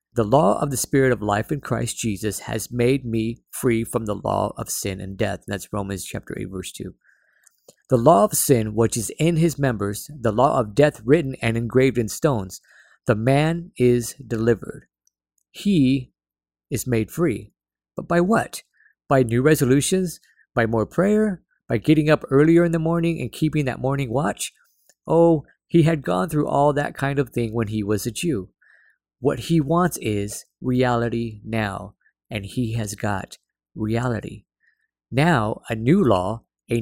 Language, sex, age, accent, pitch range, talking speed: English, male, 50-69, American, 110-150 Hz, 170 wpm